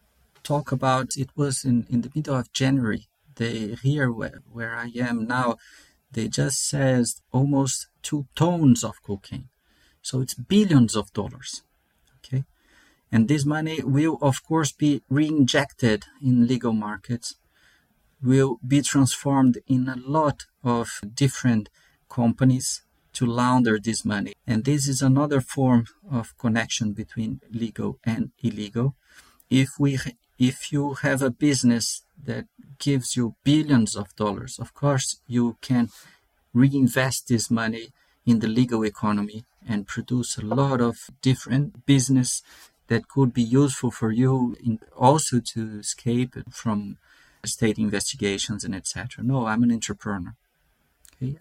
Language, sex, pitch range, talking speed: English, male, 110-135 Hz, 140 wpm